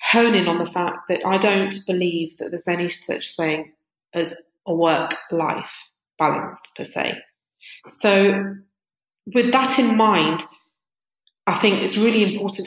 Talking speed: 135 wpm